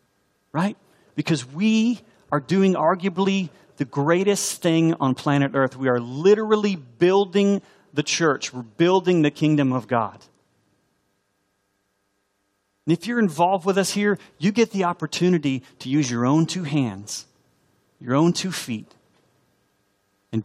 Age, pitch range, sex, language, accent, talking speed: 40-59, 115-170 Hz, male, English, American, 135 wpm